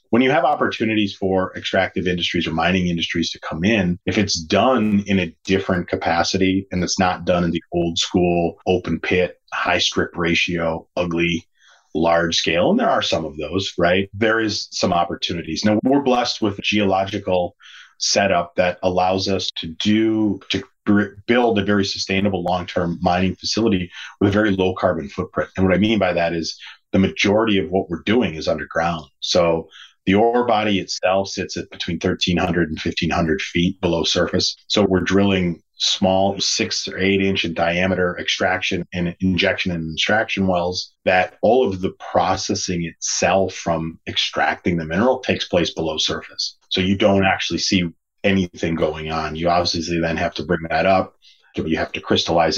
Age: 30-49